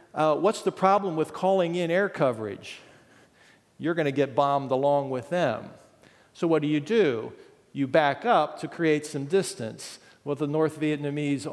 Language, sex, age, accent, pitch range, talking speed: English, male, 50-69, American, 125-160 Hz, 170 wpm